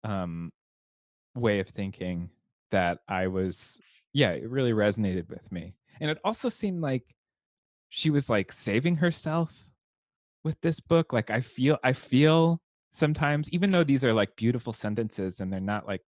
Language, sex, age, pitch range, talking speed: English, male, 20-39, 100-140 Hz, 160 wpm